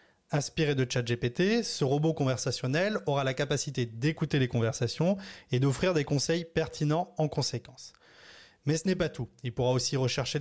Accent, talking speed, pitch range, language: French, 160 wpm, 125-165 Hz, French